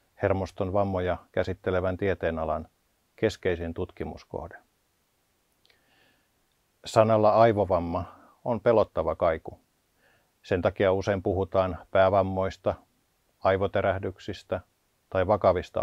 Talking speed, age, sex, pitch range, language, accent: 70 wpm, 50-69, male, 90-105 Hz, Finnish, native